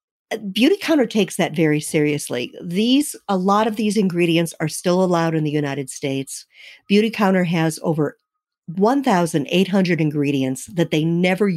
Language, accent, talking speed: English, American, 145 wpm